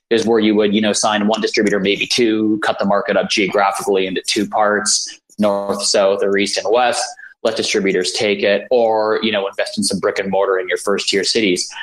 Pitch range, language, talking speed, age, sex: 100-125 Hz, English, 220 wpm, 20-39, male